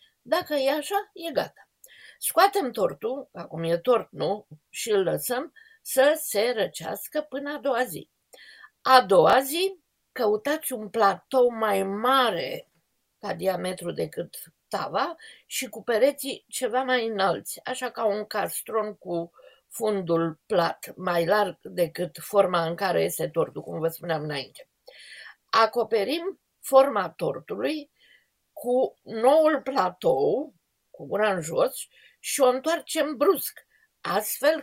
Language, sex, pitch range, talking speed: Romanian, female, 205-300 Hz, 125 wpm